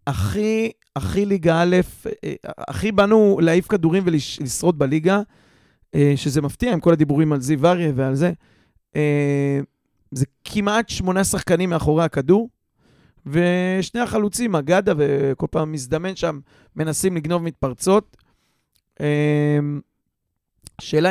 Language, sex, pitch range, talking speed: Hebrew, male, 145-185 Hz, 100 wpm